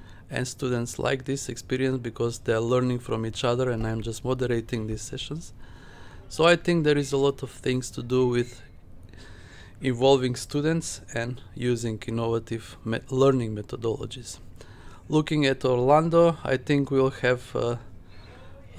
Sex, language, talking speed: male, English, 145 wpm